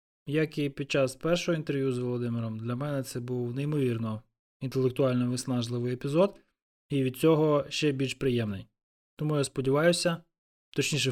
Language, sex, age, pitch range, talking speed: Ukrainian, male, 20-39, 120-150 Hz, 140 wpm